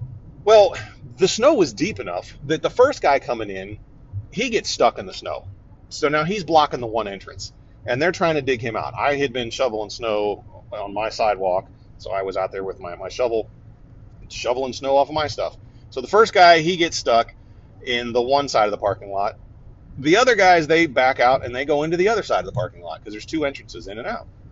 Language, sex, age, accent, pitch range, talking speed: English, male, 30-49, American, 110-155 Hz, 230 wpm